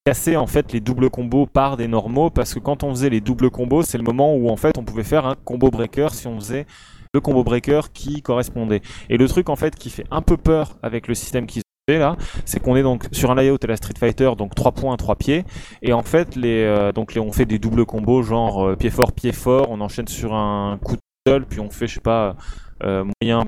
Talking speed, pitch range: 260 wpm, 110-140 Hz